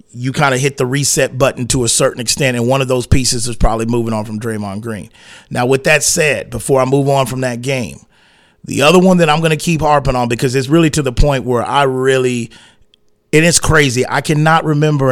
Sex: male